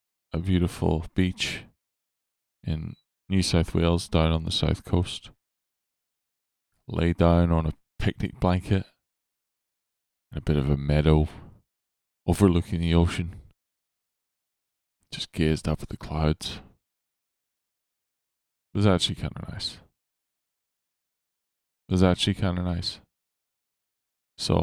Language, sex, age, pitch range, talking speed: English, male, 20-39, 75-95 Hz, 110 wpm